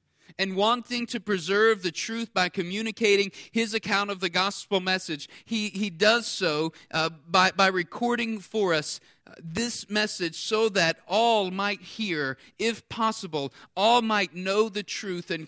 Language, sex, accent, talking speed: English, male, American, 150 wpm